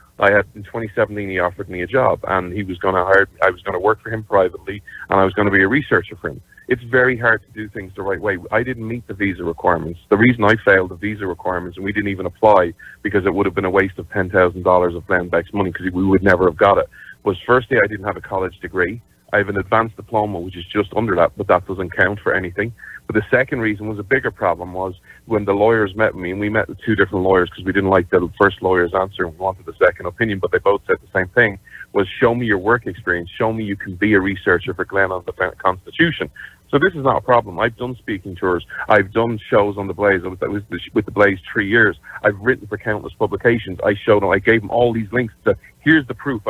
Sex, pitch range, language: male, 95-110 Hz, English